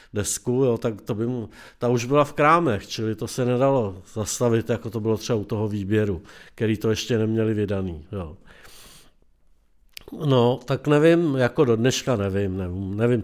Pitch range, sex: 110-135 Hz, male